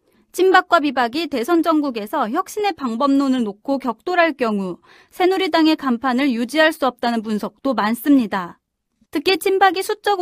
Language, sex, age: Korean, female, 30-49